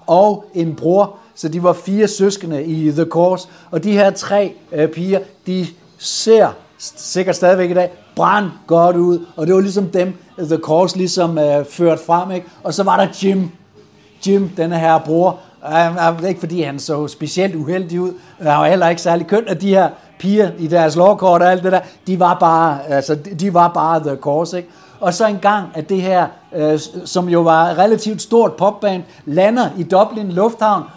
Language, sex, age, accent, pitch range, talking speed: Danish, male, 60-79, native, 170-200 Hz, 195 wpm